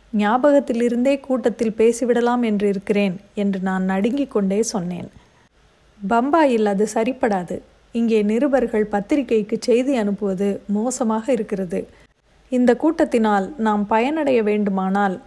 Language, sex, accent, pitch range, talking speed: Tamil, female, native, 200-240 Hz, 95 wpm